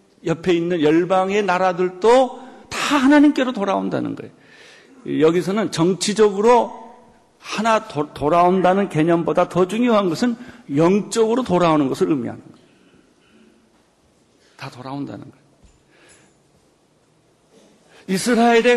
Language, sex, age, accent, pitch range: Korean, male, 50-69, native, 180-245 Hz